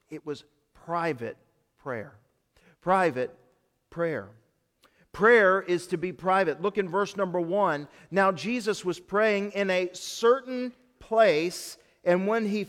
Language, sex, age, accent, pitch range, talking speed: English, male, 40-59, American, 150-200 Hz, 130 wpm